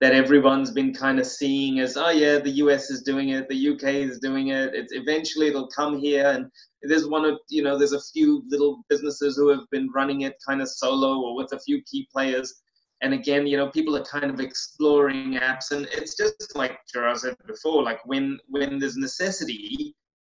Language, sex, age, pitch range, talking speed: English, male, 20-39, 135-155 Hz, 210 wpm